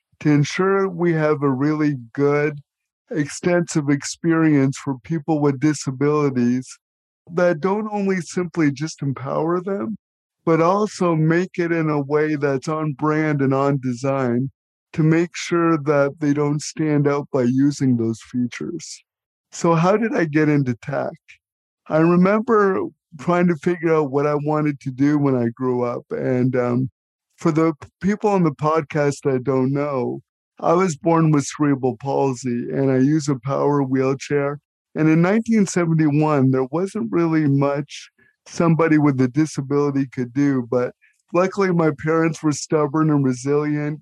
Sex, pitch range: male, 140-165 Hz